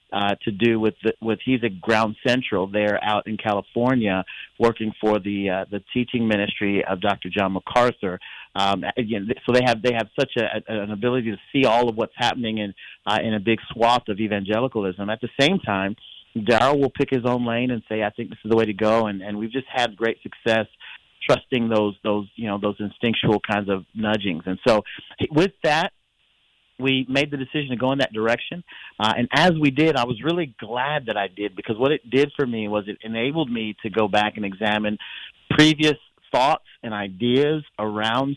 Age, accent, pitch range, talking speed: 40-59, American, 105-125 Hz, 210 wpm